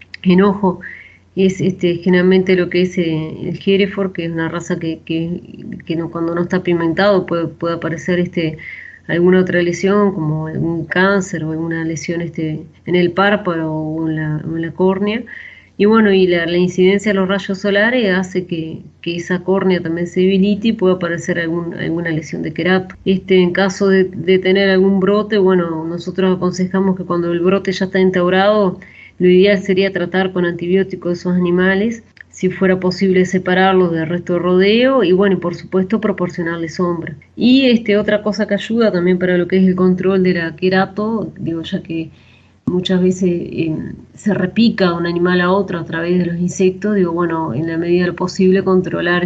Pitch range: 170-190 Hz